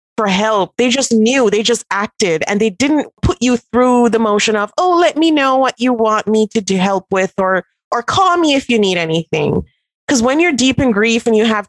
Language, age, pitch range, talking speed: English, 30-49, 195-245 Hz, 235 wpm